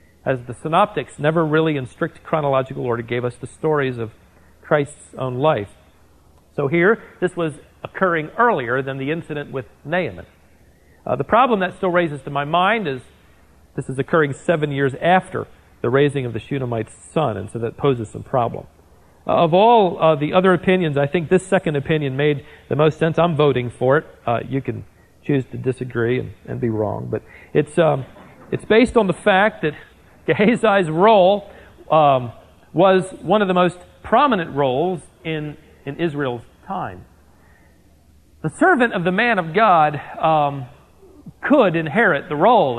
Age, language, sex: 40-59, English, male